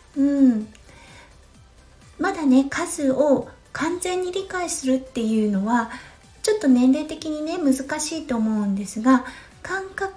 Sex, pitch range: female, 230-310 Hz